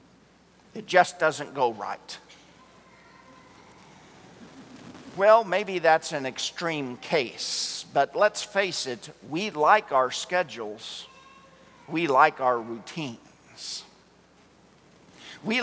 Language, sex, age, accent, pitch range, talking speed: English, male, 50-69, American, 140-190 Hz, 90 wpm